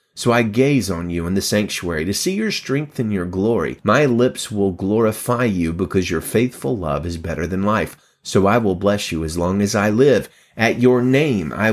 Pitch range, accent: 90-120 Hz, American